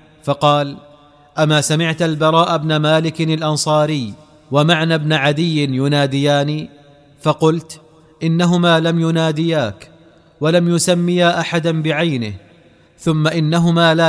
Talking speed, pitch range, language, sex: 95 wpm, 145-165 Hz, Arabic, male